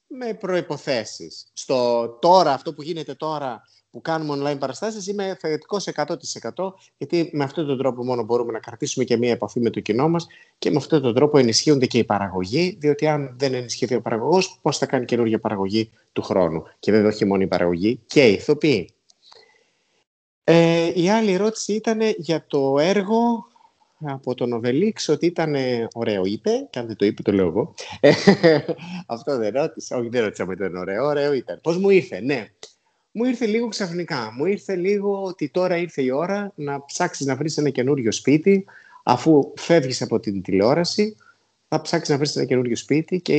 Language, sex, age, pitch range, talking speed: Greek, male, 30-49, 110-170 Hz, 185 wpm